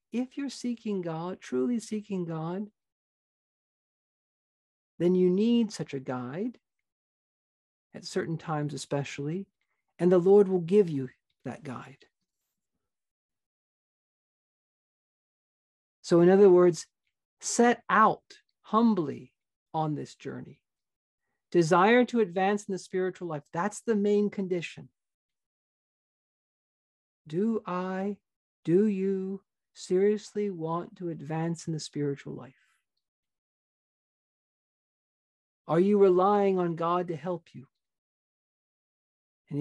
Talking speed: 100 wpm